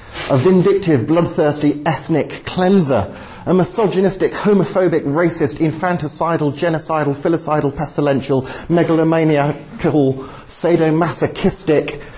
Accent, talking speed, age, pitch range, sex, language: British, 75 wpm, 40-59, 130-185 Hz, male, English